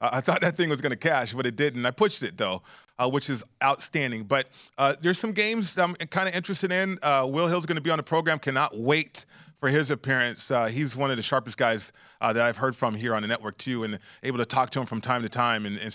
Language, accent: English, American